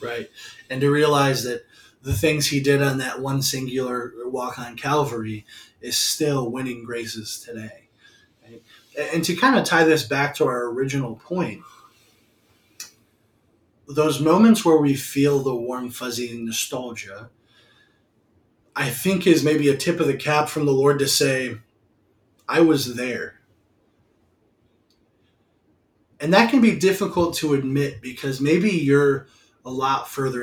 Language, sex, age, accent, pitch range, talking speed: English, male, 20-39, American, 120-145 Hz, 140 wpm